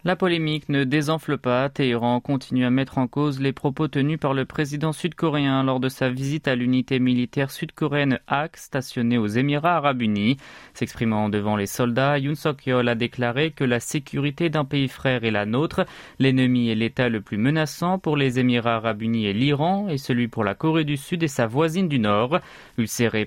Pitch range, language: 125-155 Hz, French